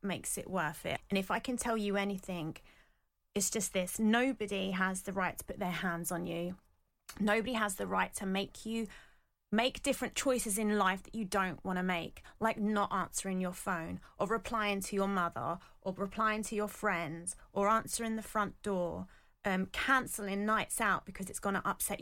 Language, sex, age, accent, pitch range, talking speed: English, female, 30-49, British, 185-225 Hz, 195 wpm